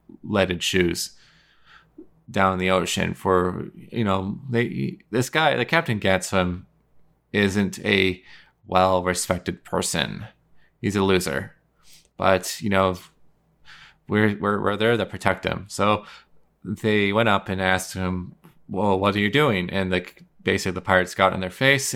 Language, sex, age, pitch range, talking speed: English, male, 20-39, 95-110 Hz, 145 wpm